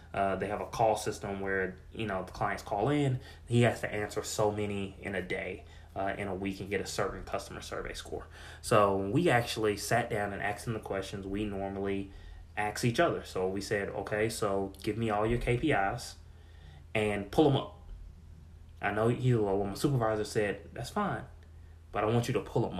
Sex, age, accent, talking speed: male, 20-39, American, 205 wpm